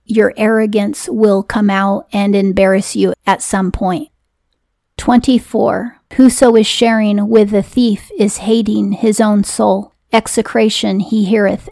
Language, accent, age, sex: English, American, 30-49, female